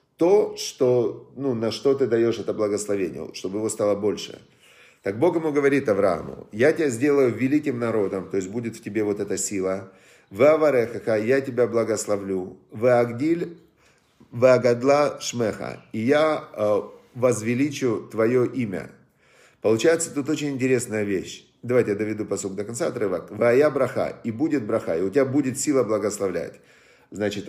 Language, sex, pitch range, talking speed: Russian, male, 105-140 Hz, 145 wpm